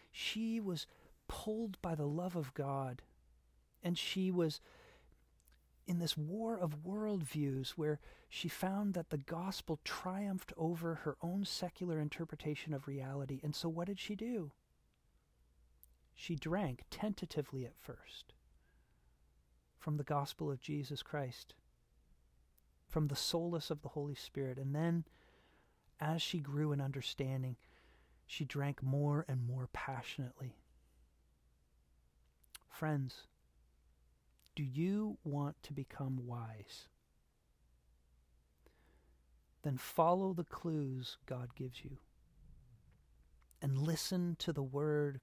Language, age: English, 40-59